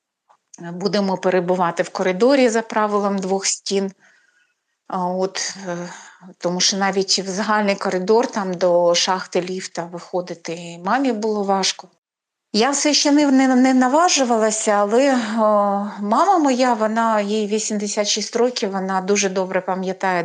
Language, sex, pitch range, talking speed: Ukrainian, female, 185-225 Hz, 120 wpm